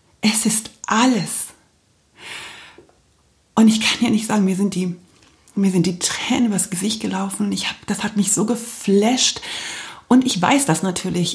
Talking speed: 165 wpm